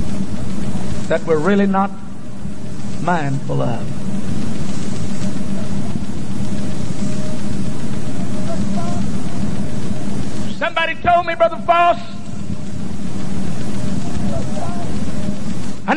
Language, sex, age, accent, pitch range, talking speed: English, male, 60-79, American, 190-210 Hz, 45 wpm